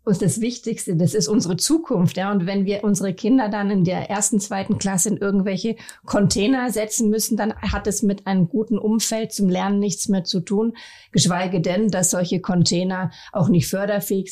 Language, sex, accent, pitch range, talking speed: German, female, German, 180-210 Hz, 190 wpm